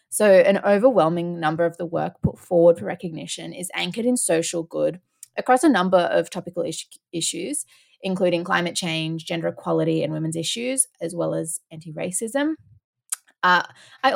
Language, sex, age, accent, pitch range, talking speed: English, female, 20-39, Australian, 165-195 Hz, 150 wpm